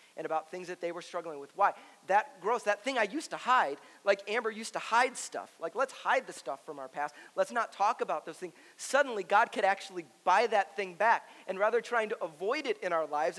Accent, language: American, English